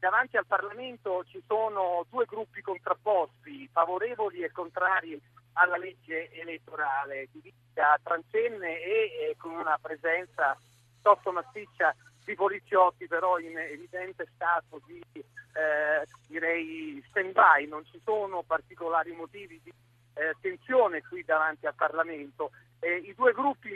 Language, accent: Italian, native